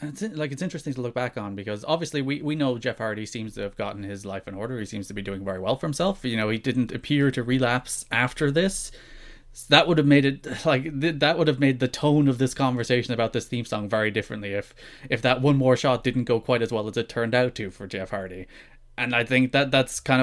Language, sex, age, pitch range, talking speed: English, male, 20-39, 105-135 Hz, 265 wpm